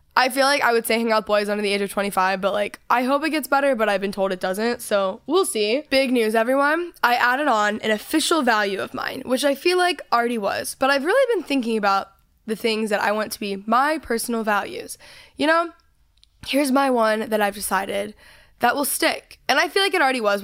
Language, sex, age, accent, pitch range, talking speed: English, female, 10-29, American, 205-255 Hz, 240 wpm